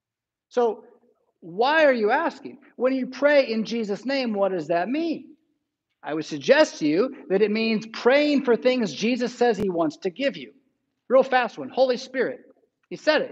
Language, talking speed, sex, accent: English, 185 wpm, male, American